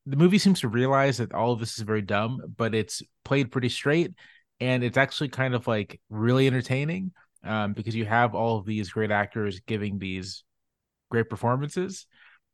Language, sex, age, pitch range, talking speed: English, male, 30-49, 105-135 Hz, 180 wpm